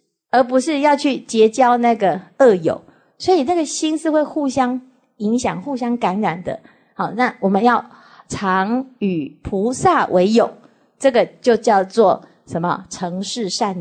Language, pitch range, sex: Chinese, 200-280 Hz, female